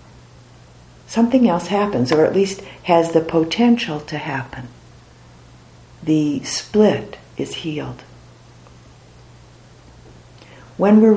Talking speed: 90 wpm